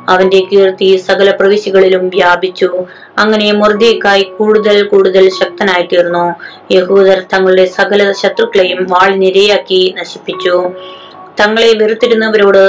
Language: Malayalam